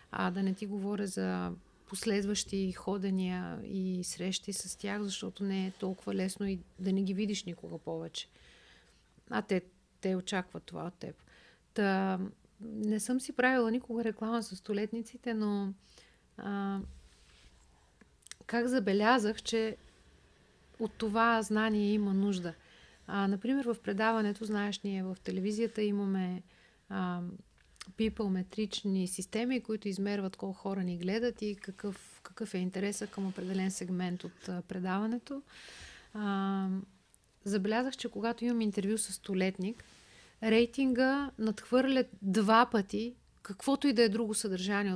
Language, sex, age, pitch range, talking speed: Bulgarian, female, 40-59, 190-225 Hz, 125 wpm